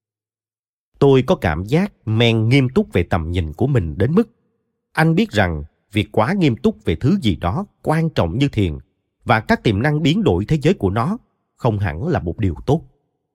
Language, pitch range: Vietnamese, 100-150 Hz